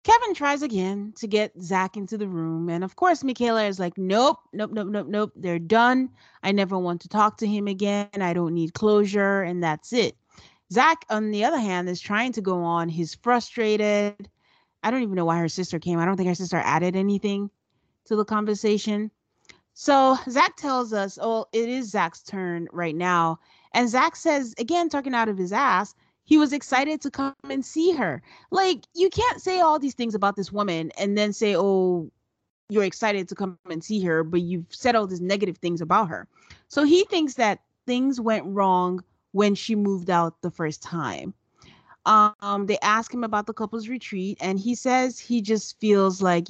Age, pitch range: 30-49, 185-240 Hz